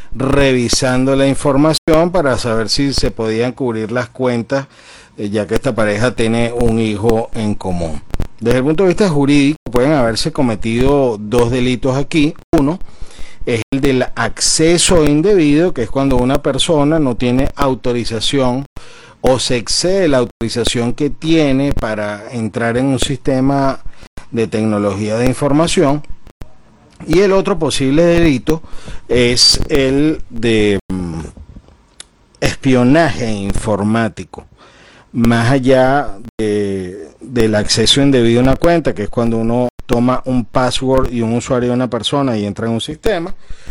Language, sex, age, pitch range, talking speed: Spanish, male, 40-59, 115-140 Hz, 135 wpm